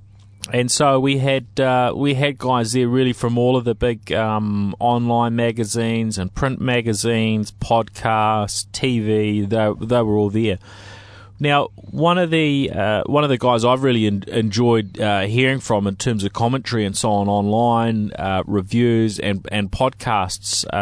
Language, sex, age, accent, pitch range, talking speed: English, male, 30-49, Australian, 100-120 Hz, 165 wpm